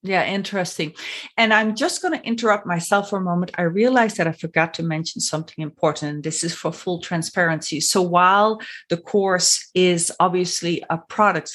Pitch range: 165-215 Hz